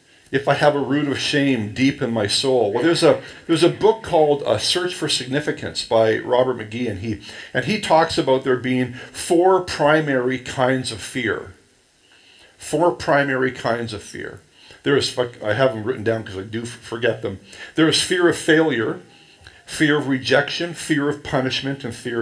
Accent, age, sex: American, 50-69, male